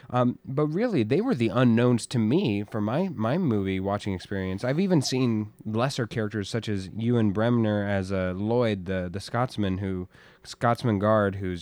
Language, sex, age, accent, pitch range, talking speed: English, male, 20-39, American, 110-150 Hz, 180 wpm